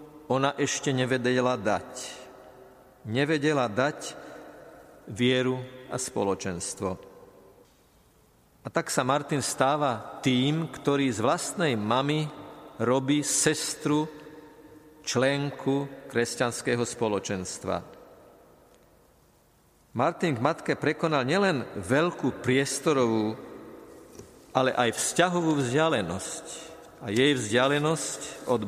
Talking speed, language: 80 wpm, Slovak